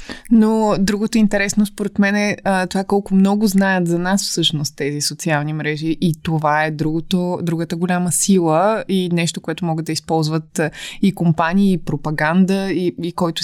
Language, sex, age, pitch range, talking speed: Bulgarian, female, 20-39, 160-195 Hz, 160 wpm